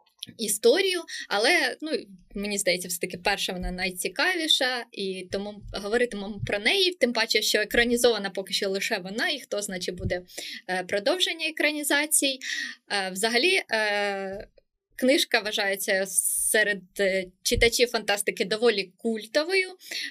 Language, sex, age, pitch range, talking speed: Ukrainian, female, 20-39, 195-245 Hz, 105 wpm